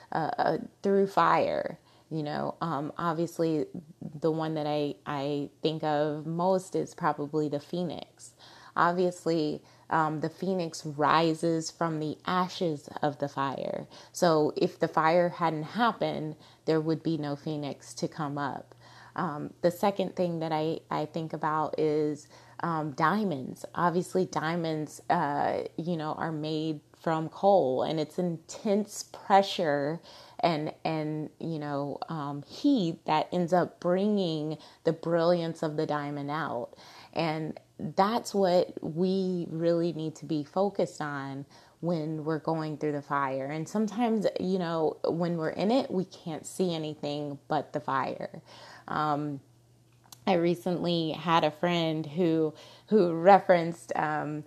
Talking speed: 140 wpm